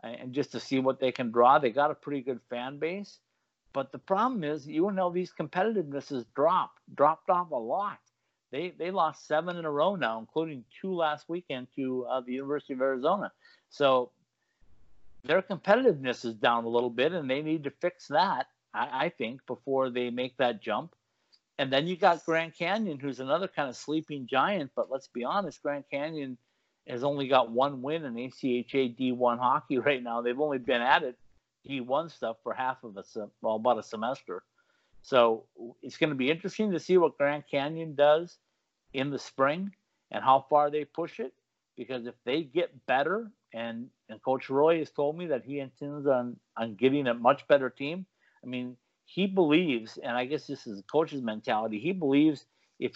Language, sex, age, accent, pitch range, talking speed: English, male, 50-69, American, 125-160 Hz, 195 wpm